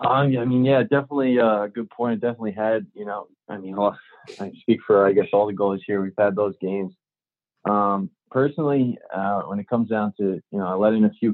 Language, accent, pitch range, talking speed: English, American, 100-120 Hz, 220 wpm